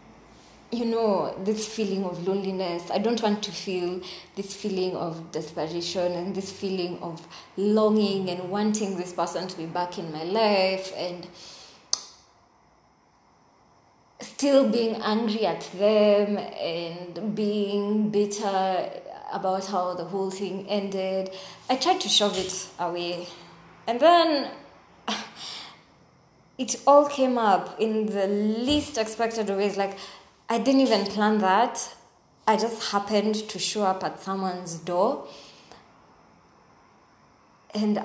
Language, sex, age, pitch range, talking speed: English, female, 20-39, 180-220 Hz, 125 wpm